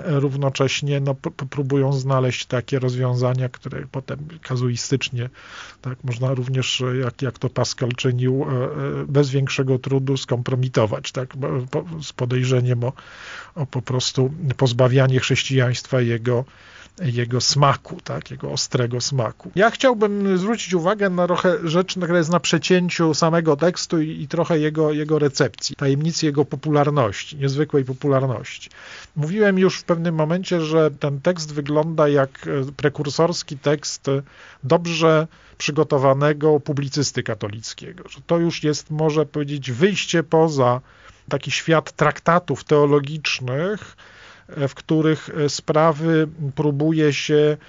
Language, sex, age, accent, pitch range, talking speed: Polish, male, 40-59, native, 135-165 Hz, 110 wpm